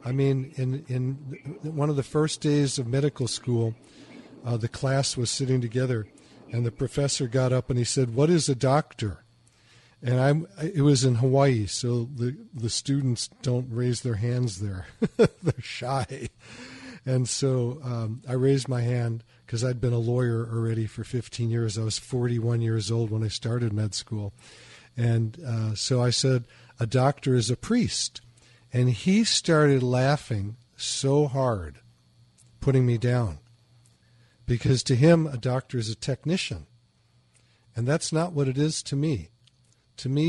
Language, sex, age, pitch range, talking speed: English, male, 50-69, 115-135 Hz, 165 wpm